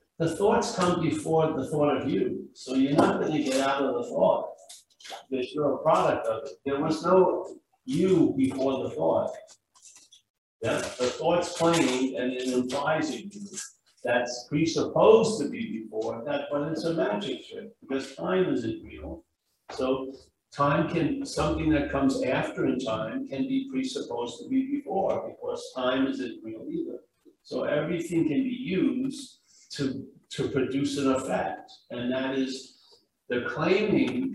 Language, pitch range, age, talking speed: English, 130-200 Hz, 60-79, 155 wpm